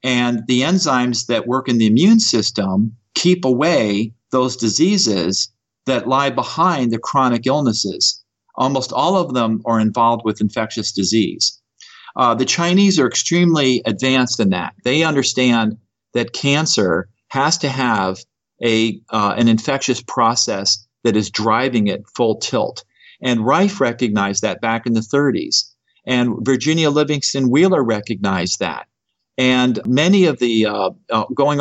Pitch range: 110-135 Hz